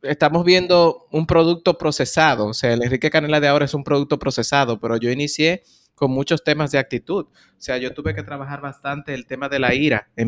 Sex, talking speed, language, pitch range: male, 215 wpm, Spanish, 125-155 Hz